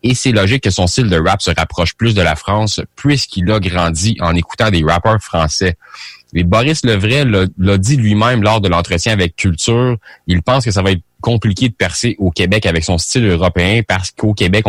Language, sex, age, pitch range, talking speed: English, male, 30-49, 85-110 Hz, 210 wpm